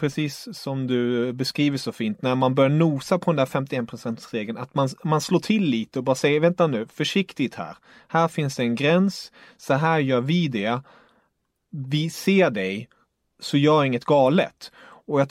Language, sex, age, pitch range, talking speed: English, male, 30-49, 130-165 Hz, 180 wpm